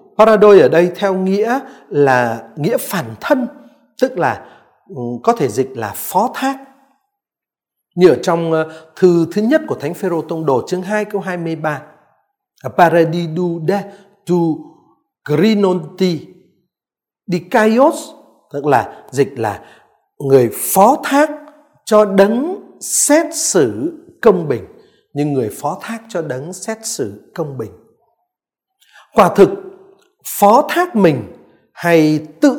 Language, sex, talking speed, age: Vietnamese, male, 125 wpm, 60-79